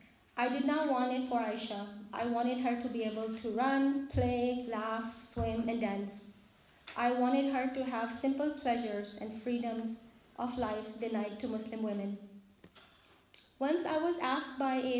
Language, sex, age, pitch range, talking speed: English, female, 30-49, 225-270 Hz, 165 wpm